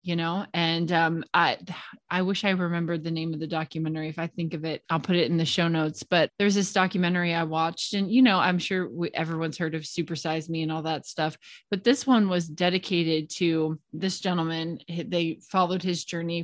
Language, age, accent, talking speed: English, 20-39, American, 210 wpm